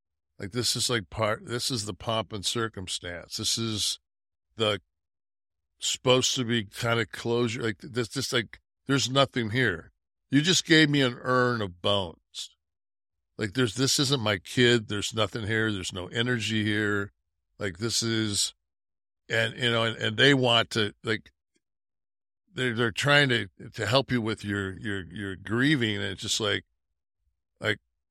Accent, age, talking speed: American, 60-79, 165 wpm